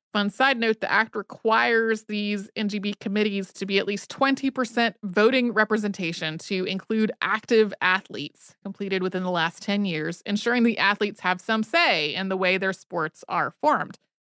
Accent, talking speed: American, 165 wpm